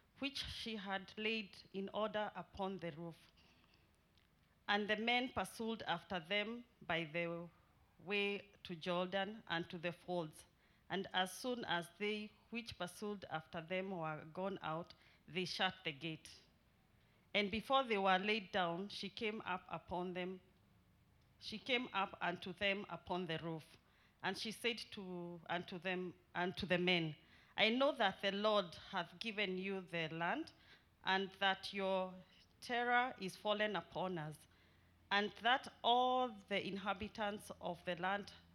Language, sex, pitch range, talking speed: English, female, 170-205 Hz, 145 wpm